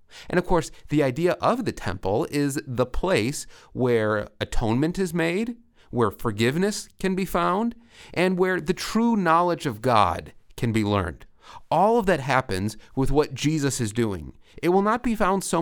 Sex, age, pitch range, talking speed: male, 30-49, 110-170 Hz, 175 wpm